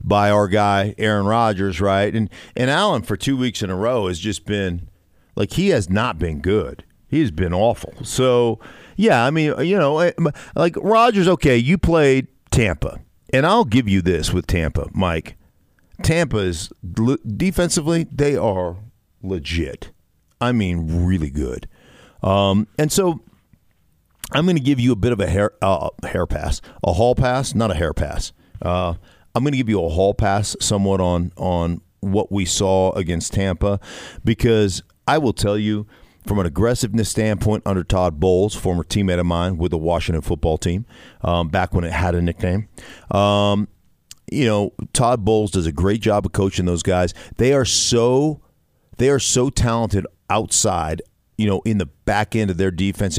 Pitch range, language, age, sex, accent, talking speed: 90-115 Hz, English, 50-69, male, American, 175 wpm